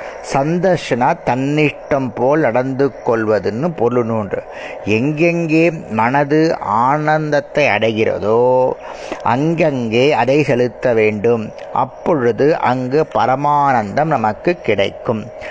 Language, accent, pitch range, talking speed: Tamil, native, 115-150 Hz, 75 wpm